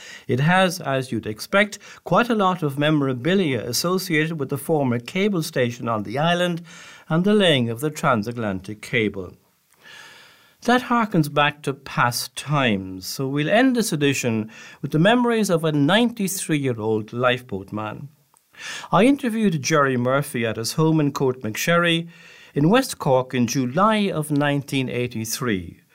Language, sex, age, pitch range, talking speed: English, male, 60-79, 125-175 Hz, 145 wpm